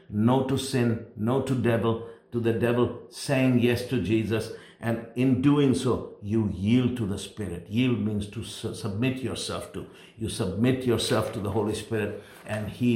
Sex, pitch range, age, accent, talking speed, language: male, 110-140 Hz, 50-69, Indian, 175 wpm, English